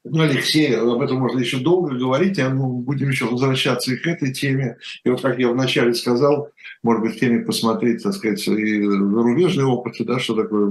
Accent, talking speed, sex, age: native, 200 wpm, male, 60-79